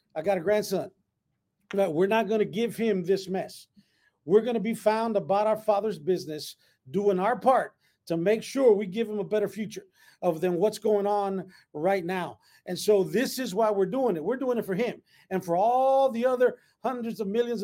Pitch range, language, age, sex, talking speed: 195-230 Hz, English, 50-69, male, 210 wpm